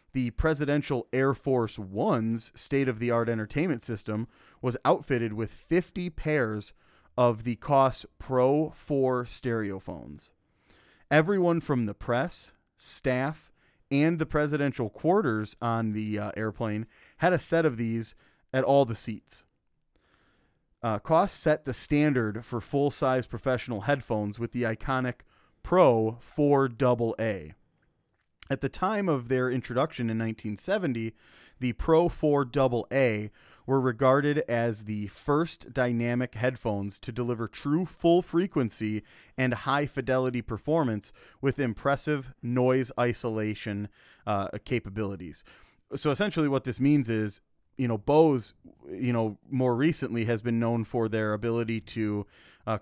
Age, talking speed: 30-49, 130 wpm